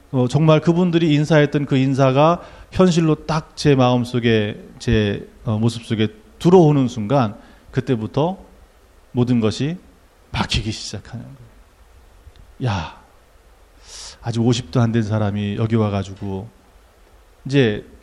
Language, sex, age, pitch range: Korean, male, 40-59, 110-150 Hz